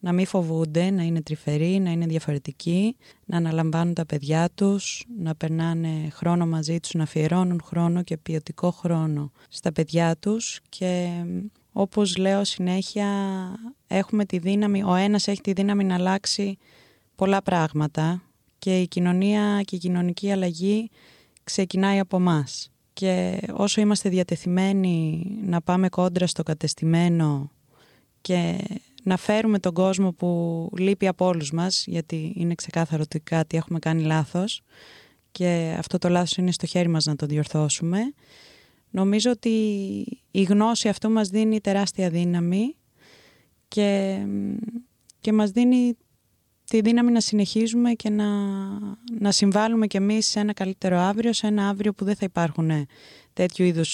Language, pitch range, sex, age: Greek, 165-200 Hz, female, 20-39